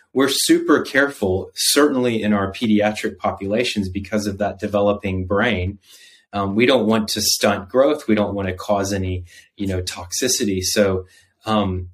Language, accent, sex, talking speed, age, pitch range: English, American, male, 155 wpm, 30-49, 95-110 Hz